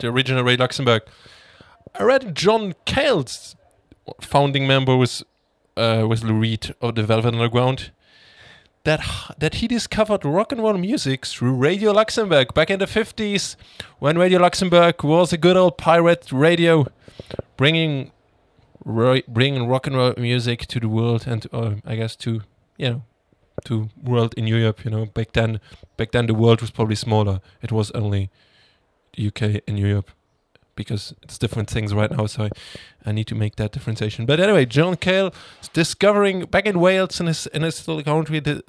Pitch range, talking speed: 115-165 Hz, 170 wpm